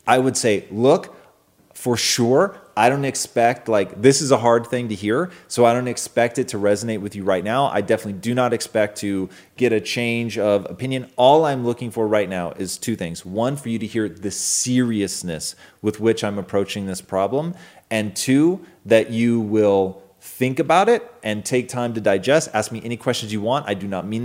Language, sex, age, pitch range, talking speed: English, male, 30-49, 100-125 Hz, 210 wpm